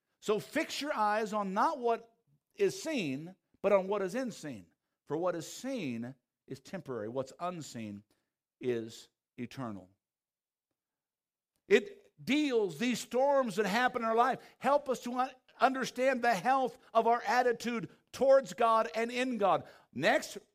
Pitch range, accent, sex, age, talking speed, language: 185-250 Hz, American, male, 60-79, 140 wpm, English